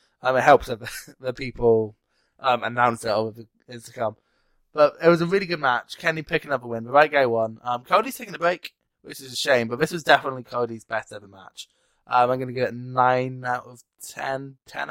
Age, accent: 20-39, British